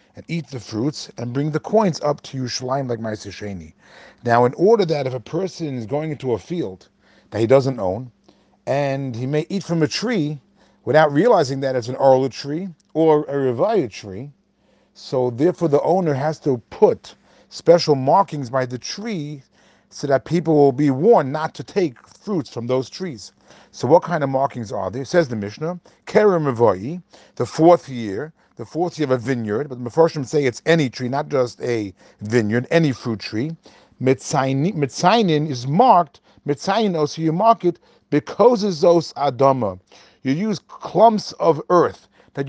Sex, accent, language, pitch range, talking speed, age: male, American, English, 125-165 Hz, 175 wpm, 40-59